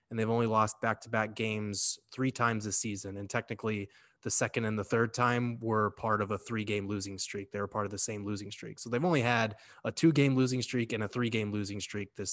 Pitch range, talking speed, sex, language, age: 105-120 Hz, 230 wpm, male, English, 20-39